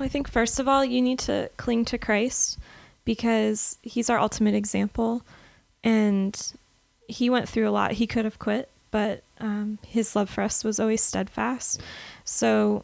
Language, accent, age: English, American, 20-39